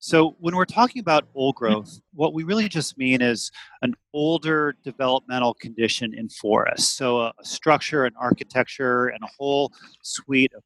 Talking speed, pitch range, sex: 165 wpm, 120-155 Hz, male